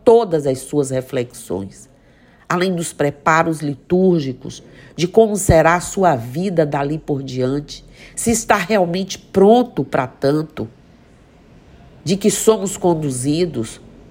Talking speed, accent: 115 wpm, Brazilian